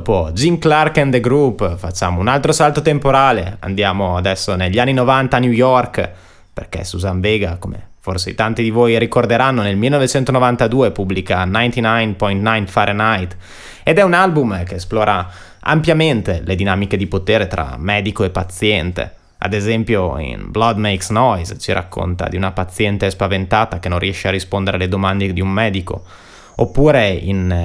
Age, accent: 20-39, native